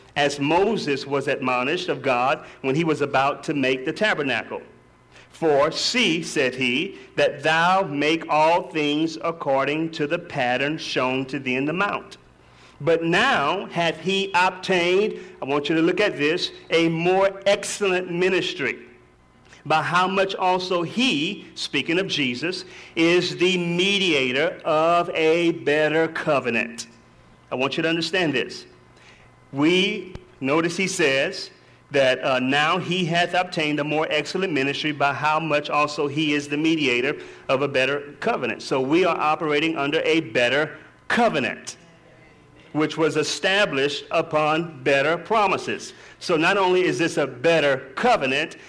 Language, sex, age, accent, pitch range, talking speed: English, male, 40-59, American, 145-180 Hz, 145 wpm